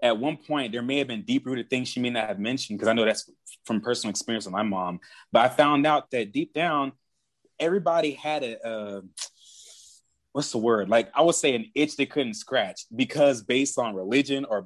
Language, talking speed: English, 215 wpm